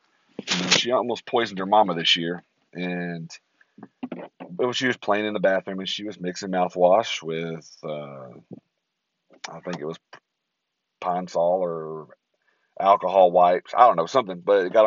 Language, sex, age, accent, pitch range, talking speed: English, male, 40-59, American, 85-100 Hz, 160 wpm